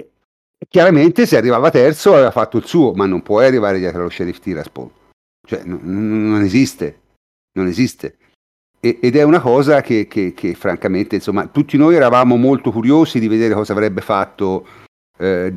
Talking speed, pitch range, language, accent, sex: 160 wpm, 100-125 Hz, Italian, native, male